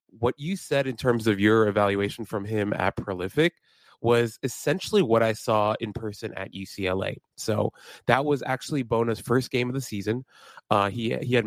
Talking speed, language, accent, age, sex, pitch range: 185 wpm, English, American, 30-49, male, 105-130 Hz